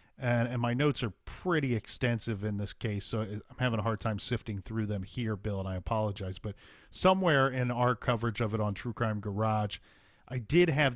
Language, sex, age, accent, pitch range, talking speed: English, male, 40-59, American, 105-125 Hz, 210 wpm